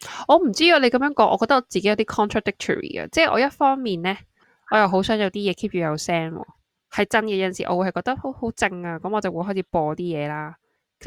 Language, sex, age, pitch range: Chinese, female, 20-39, 170-225 Hz